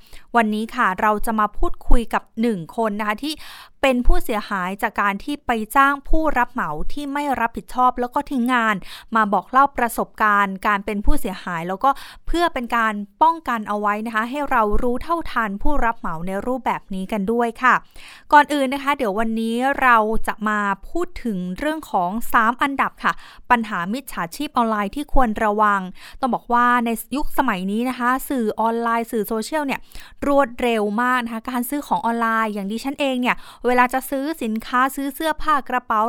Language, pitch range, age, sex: Thai, 215-270 Hz, 20-39, female